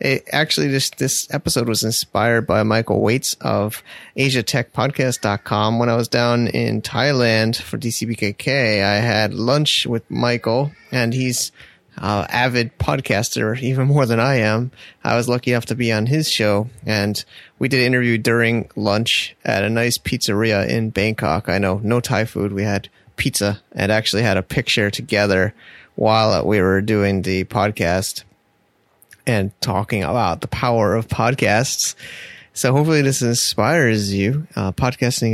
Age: 30-49